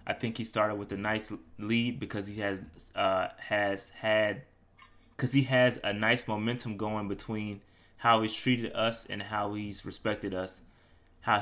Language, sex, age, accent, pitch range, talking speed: English, male, 20-39, American, 95-115 Hz, 170 wpm